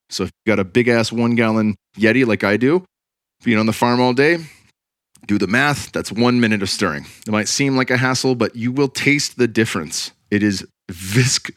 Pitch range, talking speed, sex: 105-130 Hz, 205 wpm, male